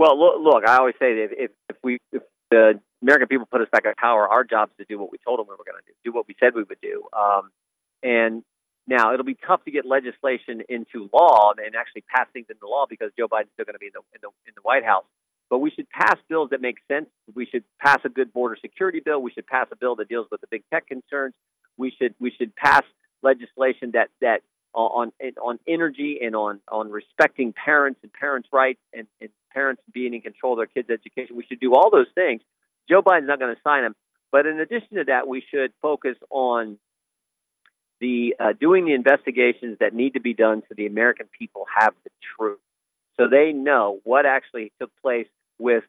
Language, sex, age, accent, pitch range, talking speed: English, male, 40-59, American, 120-165 Hz, 230 wpm